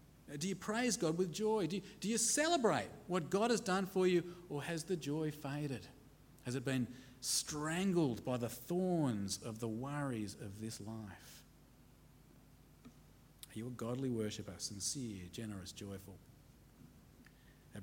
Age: 40-59